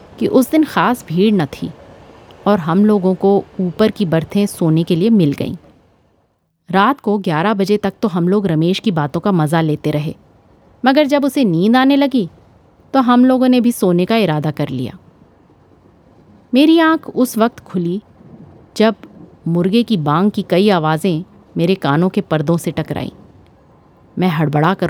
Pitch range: 170-230 Hz